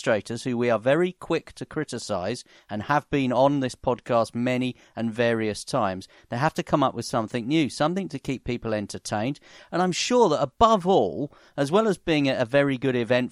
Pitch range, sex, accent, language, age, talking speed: 120-155 Hz, male, British, English, 40-59, 200 wpm